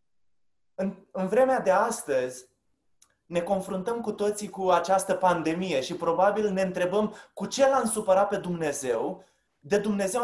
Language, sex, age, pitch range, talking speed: Romanian, male, 20-39, 180-215 Hz, 135 wpm